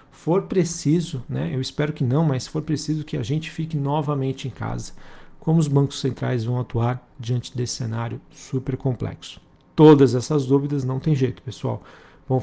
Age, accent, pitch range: 40-59, Brazilian, 125-145 Hz